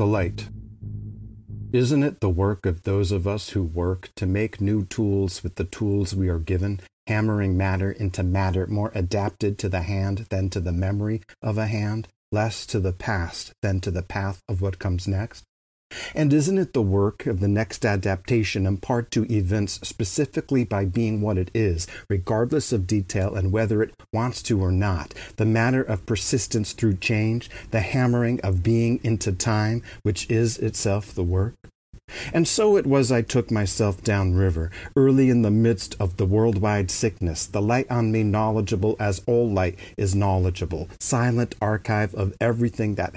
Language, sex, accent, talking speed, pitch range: English, male, American, 180 wpm, 95-115 Hz